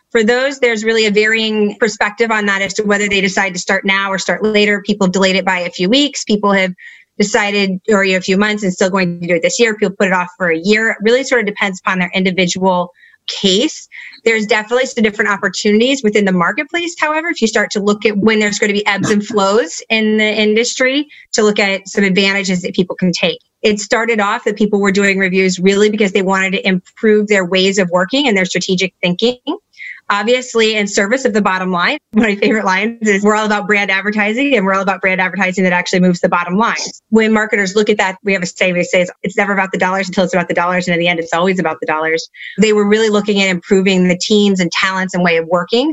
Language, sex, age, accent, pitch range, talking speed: English, female, 30-49, American, 190-220 Hz, 245 wpm